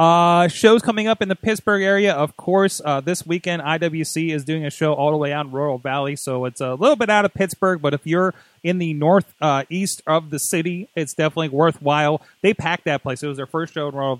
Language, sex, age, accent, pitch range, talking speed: English, male, 30-49, American, 125-175 Hz, 245 wpm